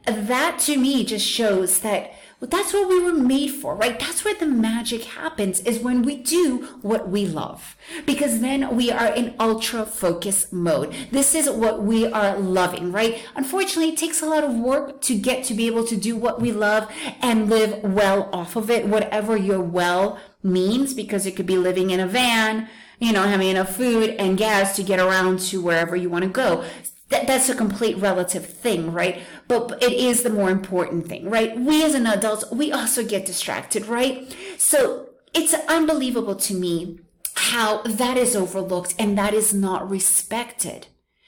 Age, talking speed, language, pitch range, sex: 30-49, 185 wpm, English, 195-250 Hz, female